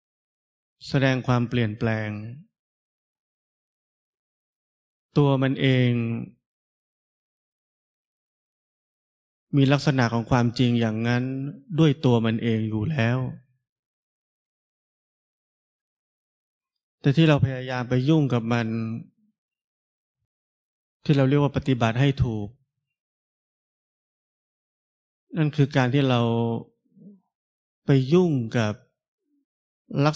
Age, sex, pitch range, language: 20-39, male, 115-145 Hz, Thai